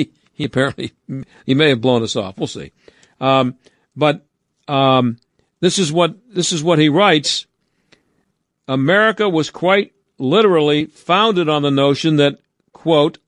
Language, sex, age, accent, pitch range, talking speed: English, male, 50-69, American, 145-185 Hz, 140 wpm